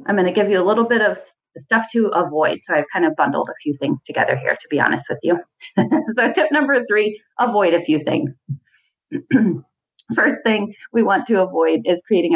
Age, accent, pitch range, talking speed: 30-49, American, 160-240 Hz, 210 wpm